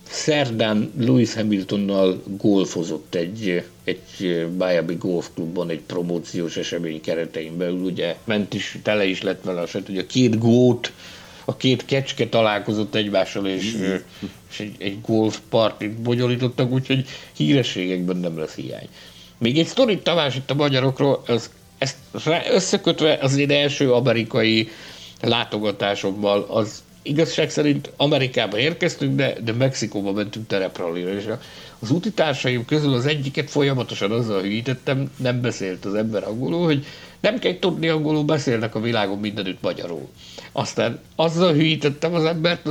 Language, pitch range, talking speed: Hungarian, 100-140 Hz, 130 wpm